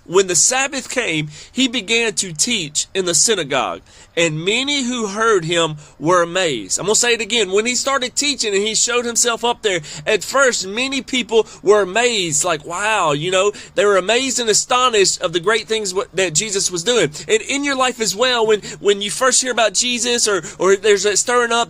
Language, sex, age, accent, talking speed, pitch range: English, male, 30-49, American, 210 wpm, 190-250 Hz